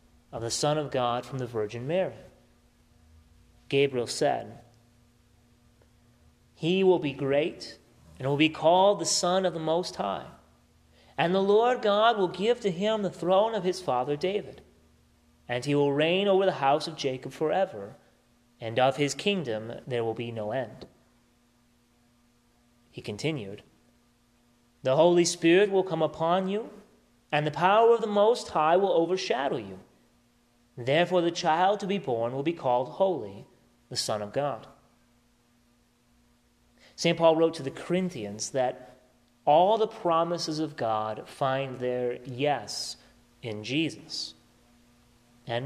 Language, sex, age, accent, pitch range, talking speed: English, male, 30-49, American, 120-175 Hz, 145 wpm